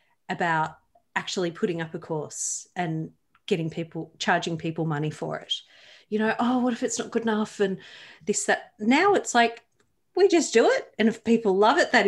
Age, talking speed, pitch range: 40-59, 195 wpm, 165-215 Hz